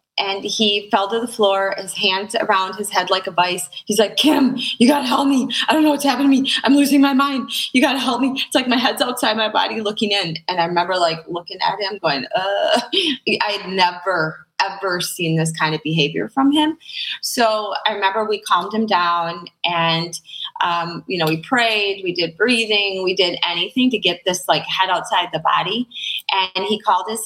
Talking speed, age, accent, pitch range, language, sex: 215 wpm, 20-39, American, 175-230 Hz, English, female